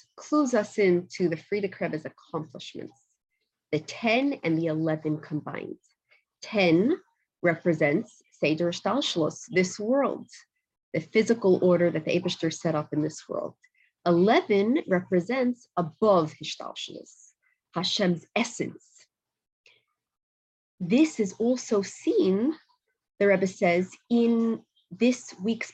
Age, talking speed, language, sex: 30-49, 105 wpm, English, female